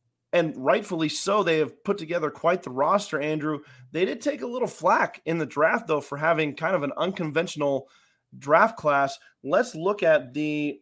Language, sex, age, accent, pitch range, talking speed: English, male, 30-49, American, 135-170 Hz, 185 wpm